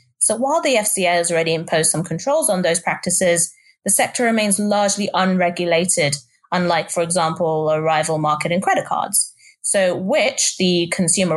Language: English